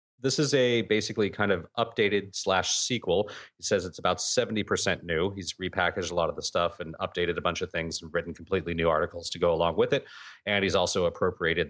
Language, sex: English, male